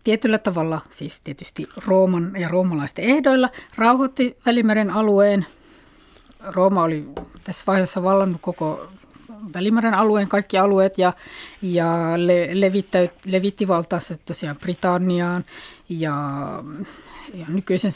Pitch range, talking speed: 175-210 Hz, 105 wpm